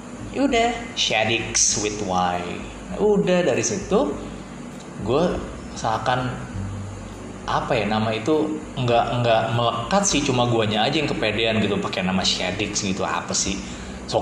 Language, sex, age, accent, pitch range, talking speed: Indonesian, male, 20-39, native, 95-115 Hz, 125 wpm